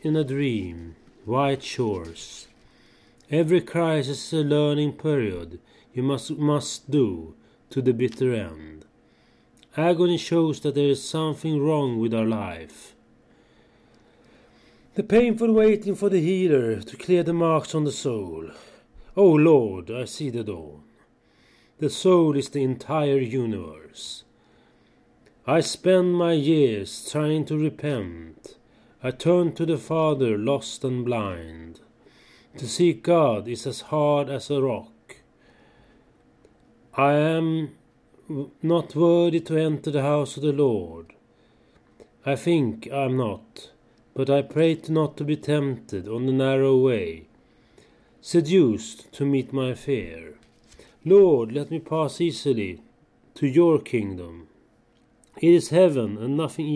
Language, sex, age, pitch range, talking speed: Swedish, male, 30-49, 120-160 Hz, 130 wpm